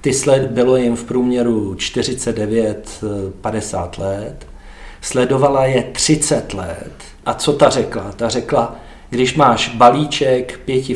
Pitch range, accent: 110-130 Hz, native